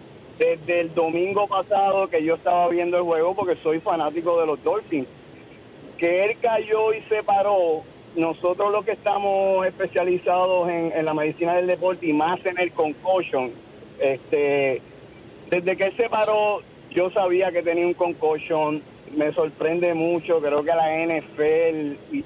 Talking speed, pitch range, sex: 155 wpm, 155-195 Hz, male